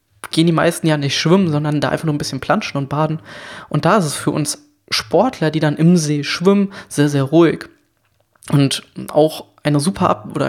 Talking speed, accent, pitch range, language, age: 200 wpm, German, 155-195 Hz, German, 20-39